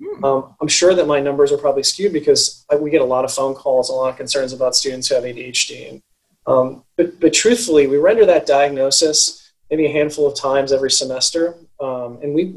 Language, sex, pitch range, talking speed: English, male, 135-170 Hz, 215 wpm